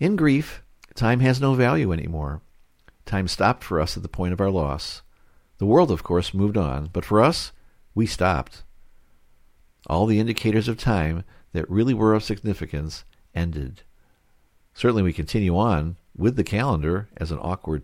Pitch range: 80-115 Hz